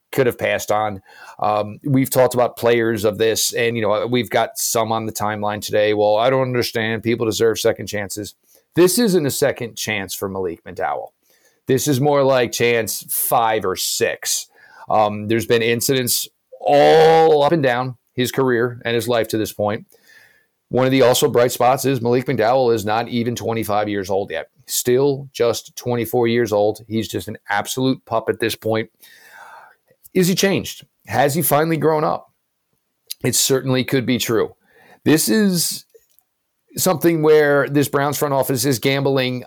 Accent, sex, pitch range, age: American, male, 115-150 Hz, 40-59